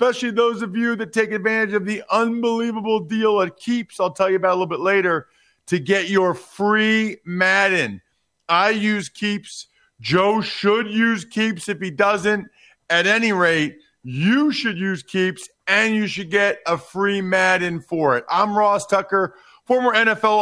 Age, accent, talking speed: 40-59, American, 170 wpm